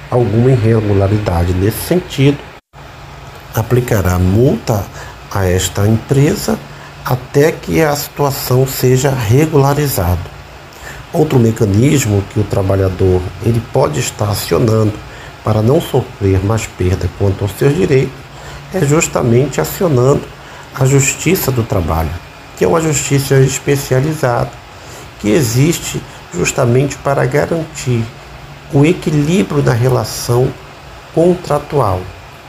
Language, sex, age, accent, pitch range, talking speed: Portuguese, male, 50-69, Brazilian, 105-140 Hz, 100 wpm